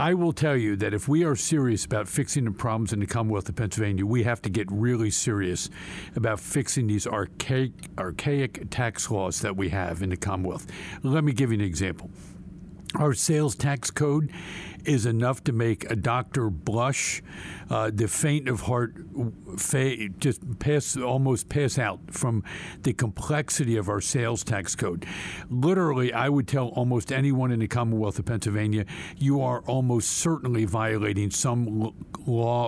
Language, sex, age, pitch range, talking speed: English, male, 60-79, 105-145 Hz, 170 wpm